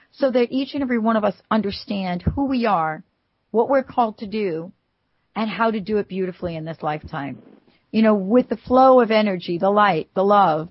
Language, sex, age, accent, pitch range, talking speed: English, female, 40-59, American, 175-225 Hz, 205 wpm